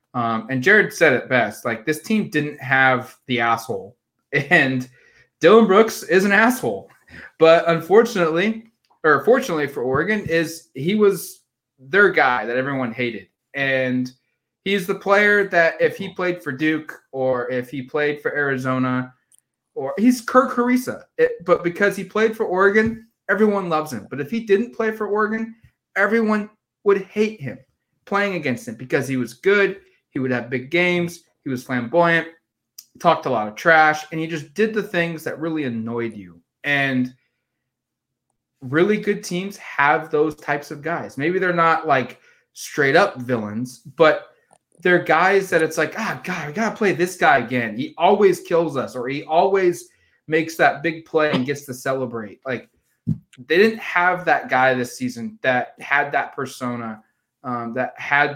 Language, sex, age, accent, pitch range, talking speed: English, male, 20-39, American, 130-195 Hz, 170 wpm